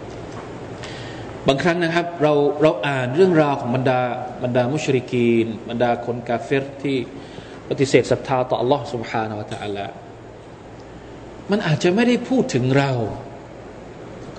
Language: Thai